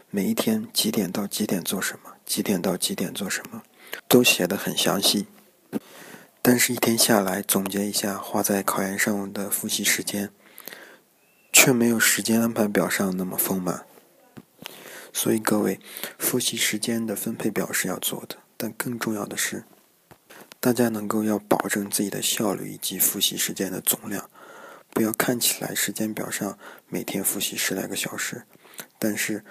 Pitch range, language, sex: 100-115 Hz, Chinese, male